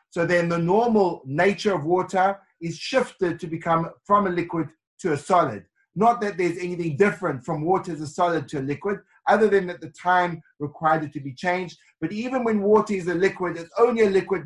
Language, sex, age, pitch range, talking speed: English, male, 30-49, 155-195 Hz, 210 wpm